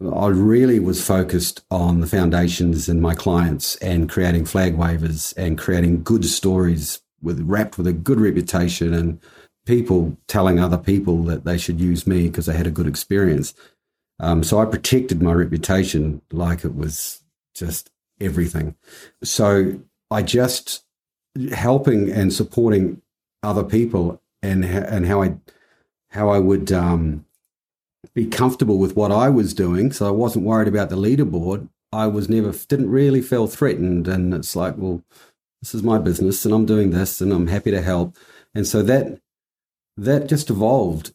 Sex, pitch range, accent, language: male, 85-105 Hz, Australian, English